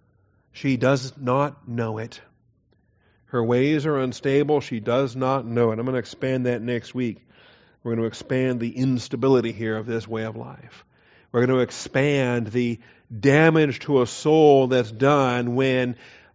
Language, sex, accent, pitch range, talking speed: English, male, American, 115-135 Hz, 165 wpm